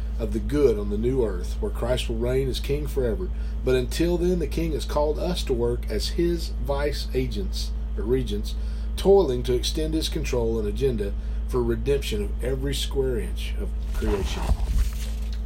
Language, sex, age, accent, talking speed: English, male, 40-59, American, 175 wpm